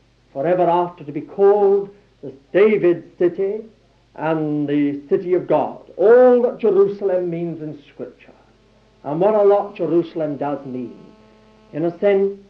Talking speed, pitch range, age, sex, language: 140 wpm, 160-215 Hz, 60-79, male, English